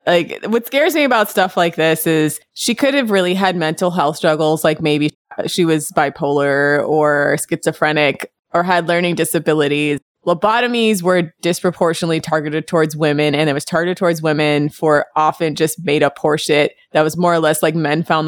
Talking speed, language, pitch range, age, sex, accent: 175 wpm, English, 150-180 Hz, 20-39, female, American